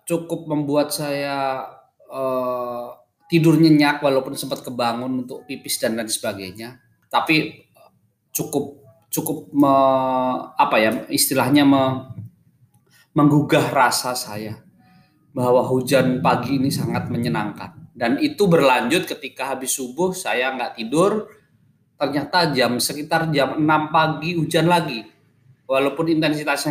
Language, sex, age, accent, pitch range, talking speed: Indonesian, male, 20-39, native, 125-160 Hz, 110 wpm